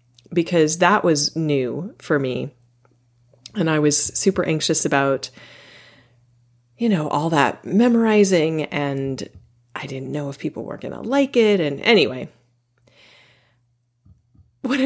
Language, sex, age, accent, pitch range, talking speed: English, female, 30-49, American, 135-205 Hz, 125 wpm